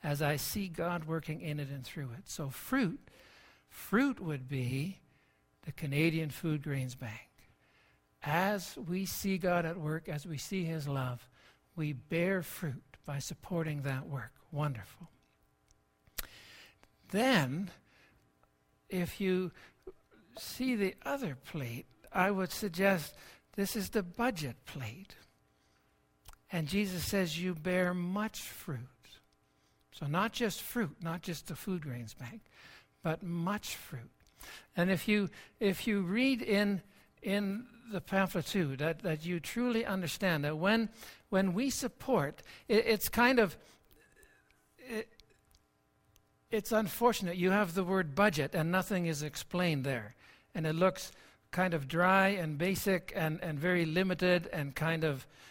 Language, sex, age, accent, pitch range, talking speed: English, male, 60-79, American, 140-195 Hz, 135 wpm